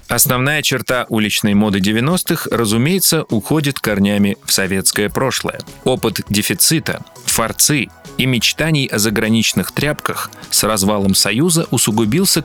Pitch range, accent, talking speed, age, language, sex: 105-155 Hz, native, 110 wpm, 30-49, Russian, male